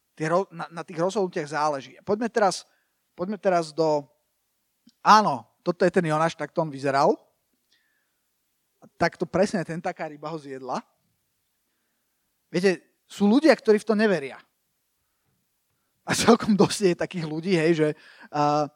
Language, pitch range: Slovak, 155-195 Hz